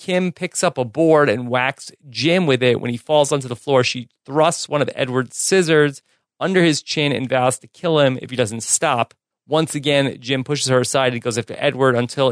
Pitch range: 120-145 Hz